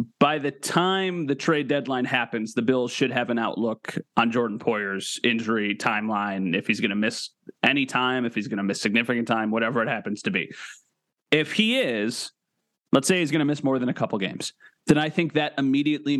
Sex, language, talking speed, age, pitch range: male, English, 205 wpm, 30-49, 120-150 Hz